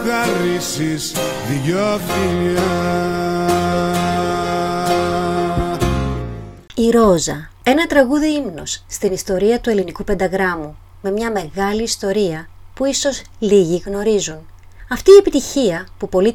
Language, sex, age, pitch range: Greek, female, 30-49, 175-235 Hz